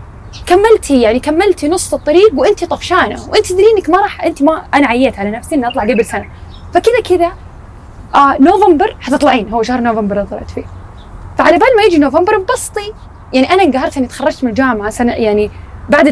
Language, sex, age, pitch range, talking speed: Arabic, female, 10-29, 240-320 Hz, 180 wpm